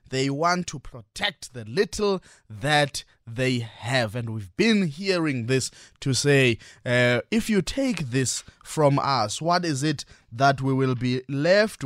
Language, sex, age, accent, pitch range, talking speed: English, male, 20-39, South African, 125-160 Hz, 155 wpm